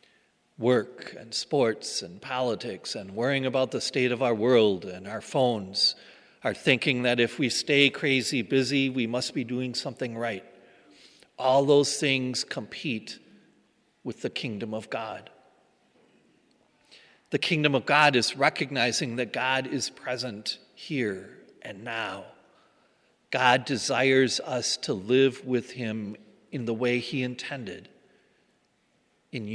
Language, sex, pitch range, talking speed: English, male, 120-140 Hz, 130 wpm